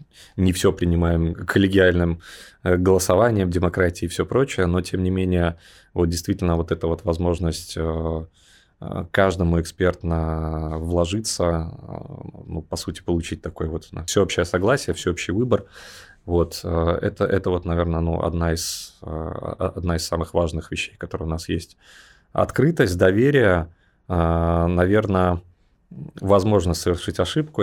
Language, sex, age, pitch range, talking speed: Russian, male, 20-39, 85-95 Hz, 120 wpm